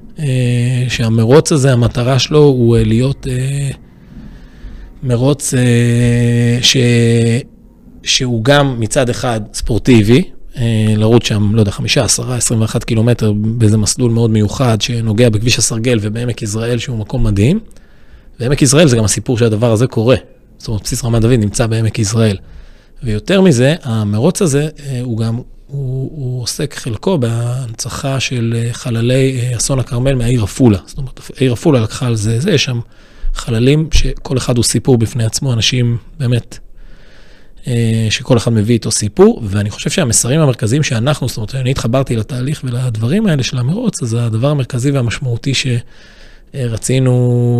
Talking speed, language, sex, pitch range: 140 wpm, Hebrew, male, 115-135 Hz